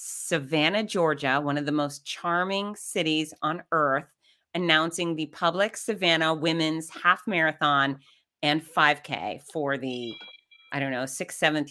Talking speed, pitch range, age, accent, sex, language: 135 wpm, 155-190 Hz, 30-49, American, female, English